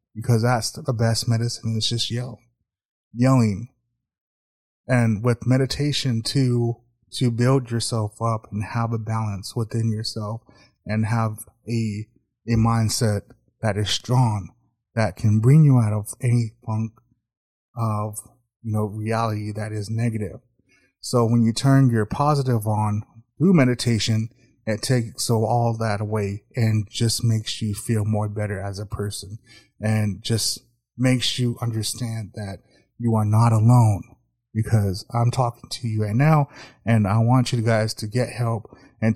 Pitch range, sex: 110-120 Hz, male